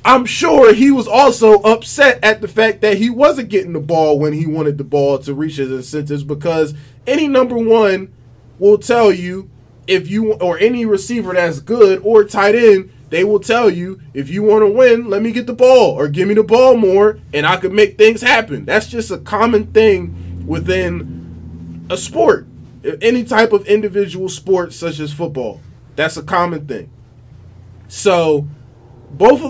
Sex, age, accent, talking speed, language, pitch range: male, 20-39, American, 185 wpm, English, 135-215 Hz